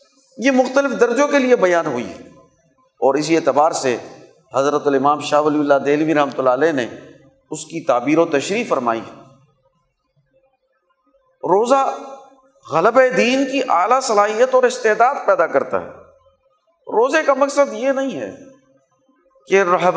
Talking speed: 140 wpm